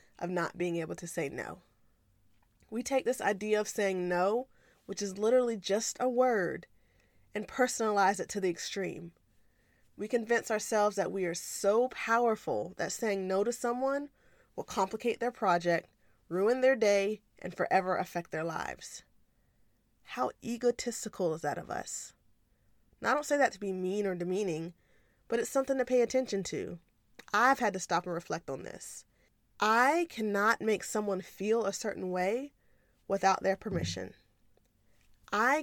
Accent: American